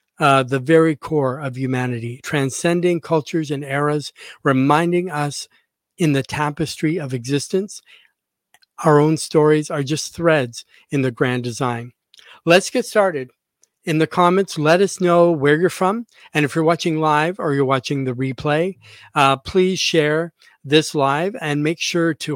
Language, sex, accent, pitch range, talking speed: English, male, American, 140-165 Hz, 155 wpm